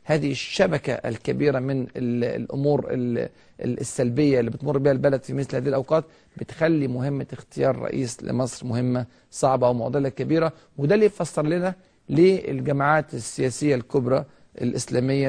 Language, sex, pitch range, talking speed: Arabic, male, 125-145 Hz, 120 wpm